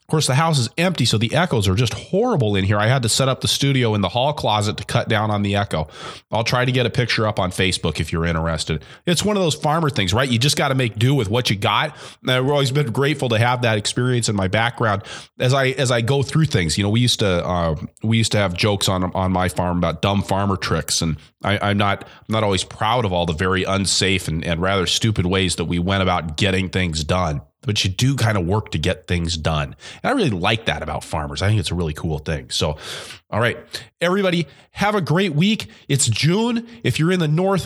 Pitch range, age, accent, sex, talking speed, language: 100-150 Hz, 30-49, American, male, 260 wpm, English